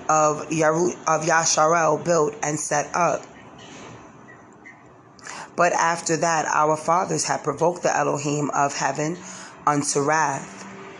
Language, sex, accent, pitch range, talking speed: English, female, American, 145-170 Hz, 105 wpm